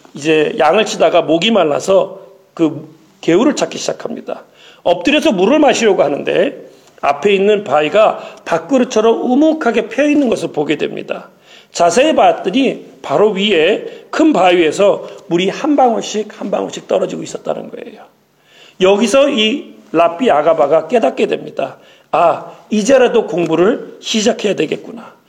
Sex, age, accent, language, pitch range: male, 40-59, native, Korean, 180-270 Hz